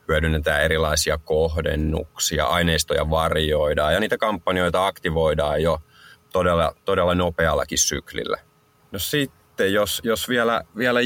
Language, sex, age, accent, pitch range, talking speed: Finnish, male, 30-49, native, 80-95 Hz, 110 wpm